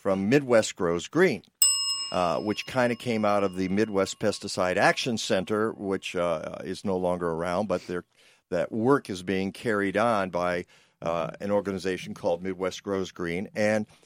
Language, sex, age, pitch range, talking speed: English, male, 50-69, 105-155 Hz, 160 wpm